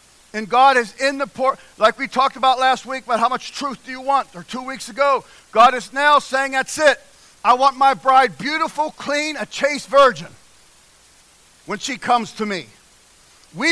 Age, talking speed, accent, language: 50-69, 190 wpm, American, English